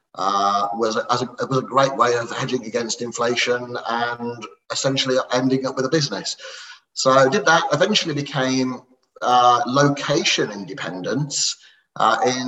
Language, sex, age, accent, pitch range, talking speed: English, male, 30-49, British, 110-130 Hz, 140 wpm